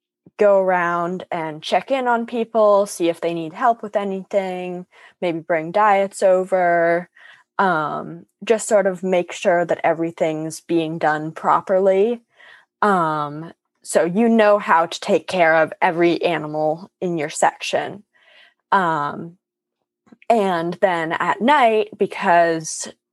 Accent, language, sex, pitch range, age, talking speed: American, English, female, 160-195 Hz, 20-39, 125 wpm